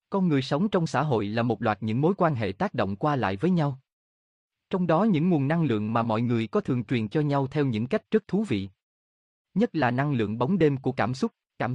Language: Vietnamese